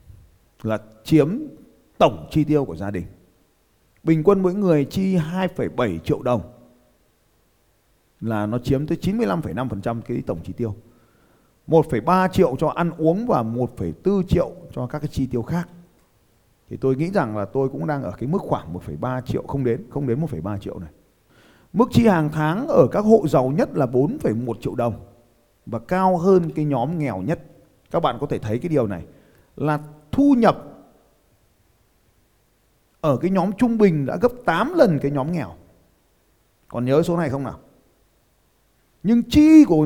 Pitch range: 110-170 Hz